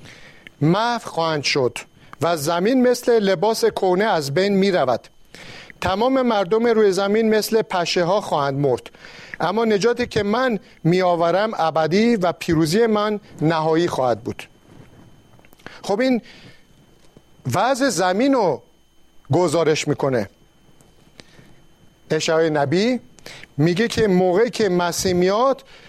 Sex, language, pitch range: male, Persian, 165-220 Hz